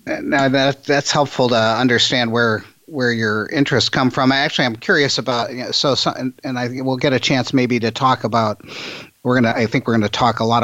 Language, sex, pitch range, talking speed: English, male, 110-130 Hz, 230 wpm